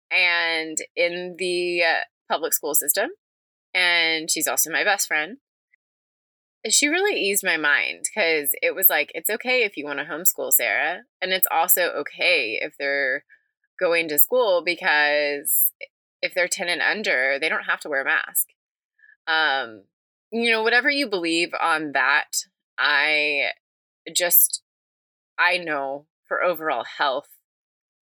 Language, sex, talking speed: English, female, 140 wpm